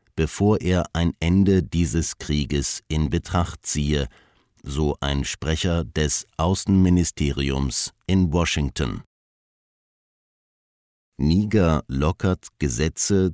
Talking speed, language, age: 85 wpm, English, 50-69